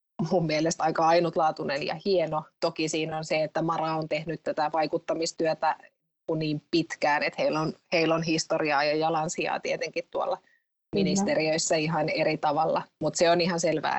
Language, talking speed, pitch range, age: Finnish, 160 wpm, 155-170 Hz, 20-39